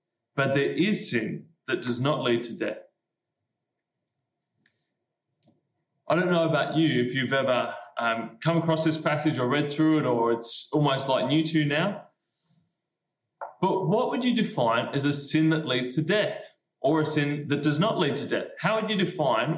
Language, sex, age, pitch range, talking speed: English, male, 20-39, 130-165 Hz, 180 wpm